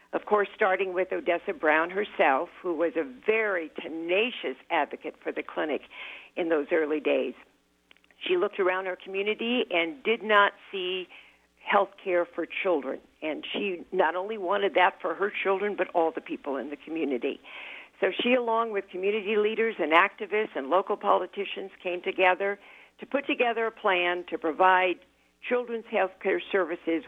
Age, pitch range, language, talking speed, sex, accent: 60-79, 170-205 Hz, English, 160 wpm, female, American